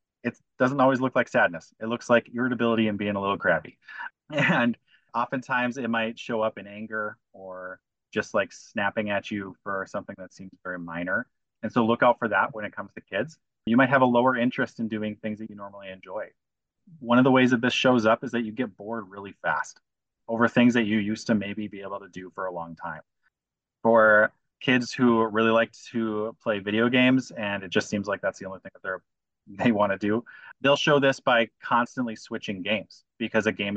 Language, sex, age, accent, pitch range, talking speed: English, male, 30-49, American, 100-125 Hz, 220 wpm